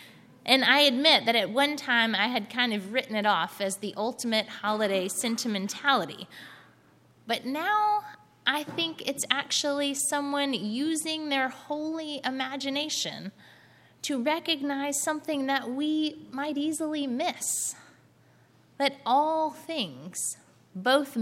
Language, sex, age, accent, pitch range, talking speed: English, female, 20-39, American, 220-290 Hz, 120 wpm